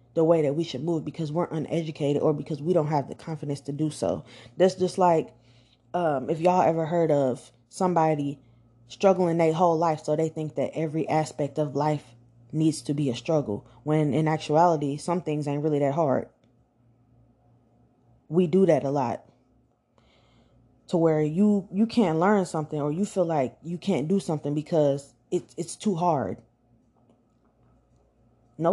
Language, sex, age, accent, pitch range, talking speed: English, female, 20-39, American, 125-175 Hz, 165 wpm